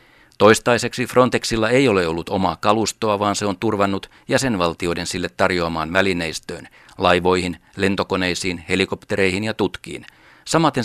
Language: Finnish